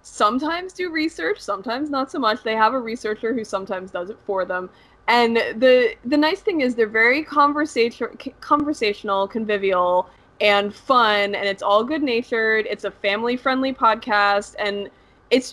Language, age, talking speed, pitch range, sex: English, 20-39, 155 wpm, 190-235 Hz, female